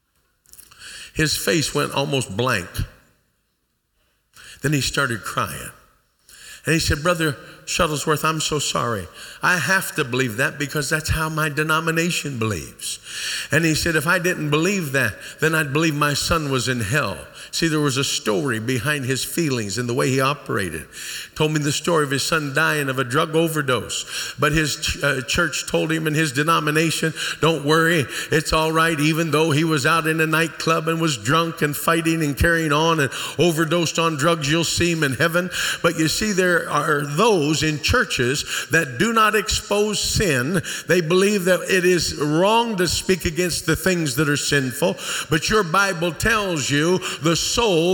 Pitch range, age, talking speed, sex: 150-190 Hz, 50-69, 180 wpm, male